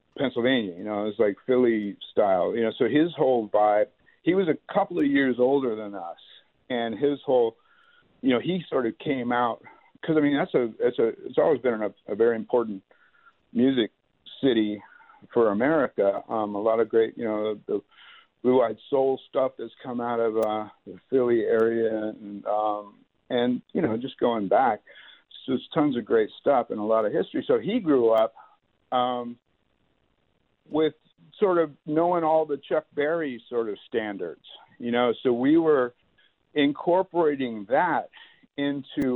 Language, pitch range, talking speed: English, 110-145 Hz, 175 wpm